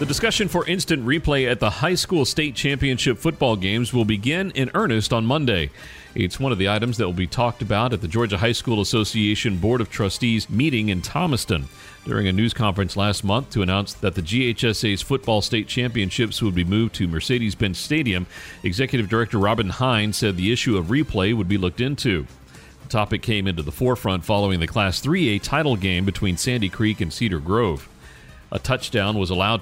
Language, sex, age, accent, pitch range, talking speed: English, male, 40-59, American, 100-125 Hz, 195 wpm